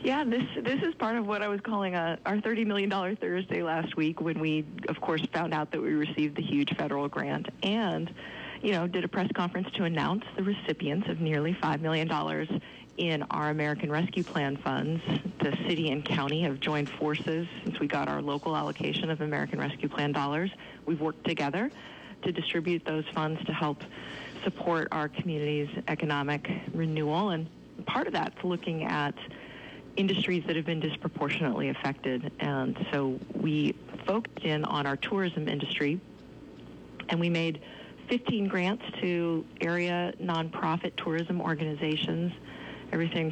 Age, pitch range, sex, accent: 30-49, 150-185 Hz, female, American